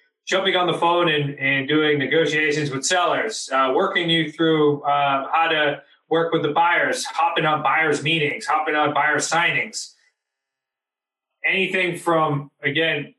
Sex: male